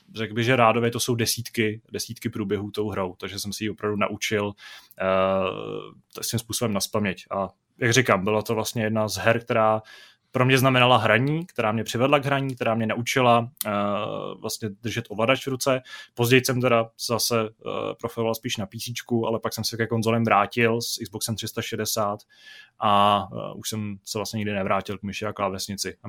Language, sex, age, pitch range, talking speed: Czech, male, 20-39, 105-120 Hz, 185 wpm